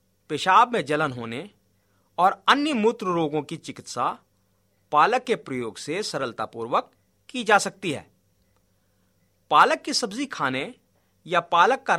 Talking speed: 130 wpm